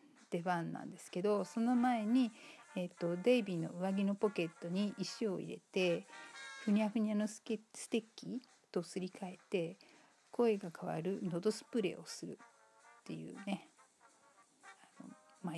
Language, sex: Japanese, female